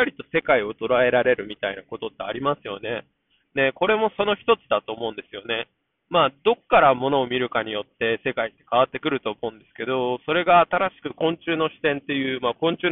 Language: Japanese